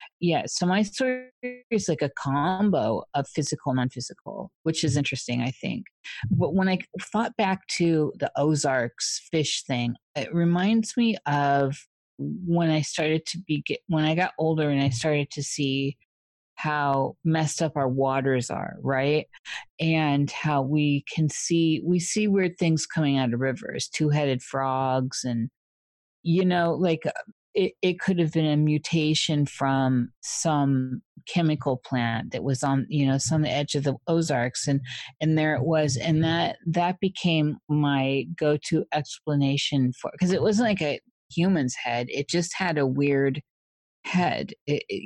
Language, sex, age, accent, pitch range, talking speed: English, female, 50-69, American, 135-170 Hz, 160 wpm